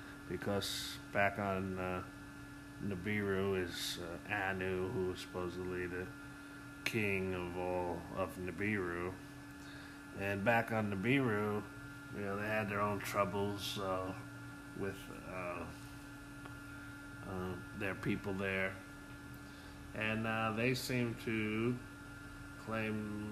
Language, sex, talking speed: English, male, 105 wpm